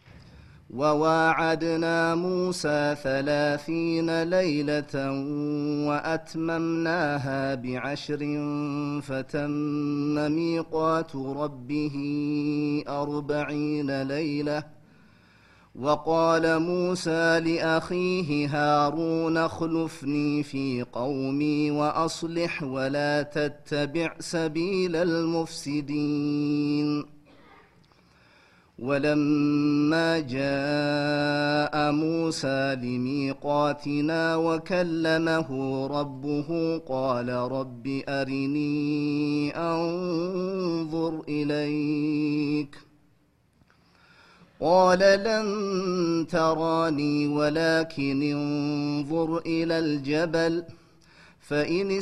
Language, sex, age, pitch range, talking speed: Amharic, male, 30-49, 145-165 Hz, 50 wpm